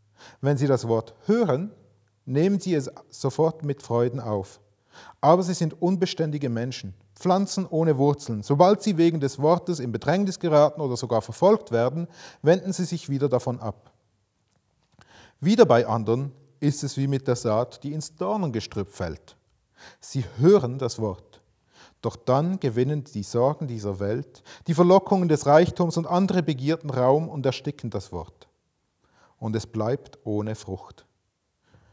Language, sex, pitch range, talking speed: German, male, 115-160 Hz, 150 wpm